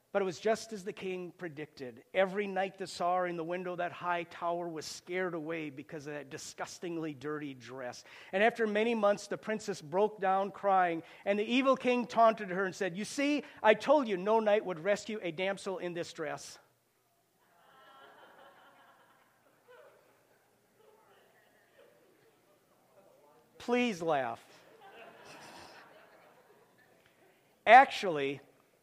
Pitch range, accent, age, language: 145-190 Hz, American, 50-69, English